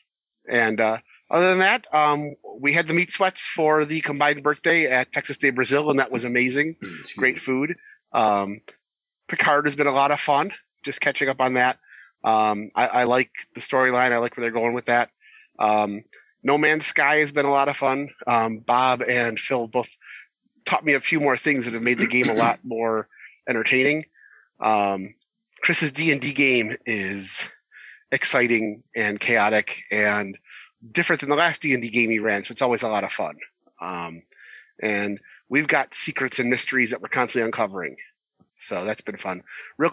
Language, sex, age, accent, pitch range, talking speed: English, male, 30-49, American, 115-145 Hz, 180 wpm